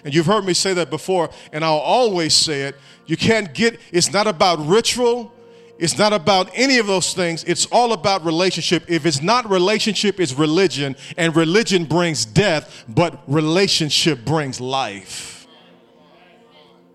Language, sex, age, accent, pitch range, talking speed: English, male, 40-59, American, 150-215 Hz, 155 wpm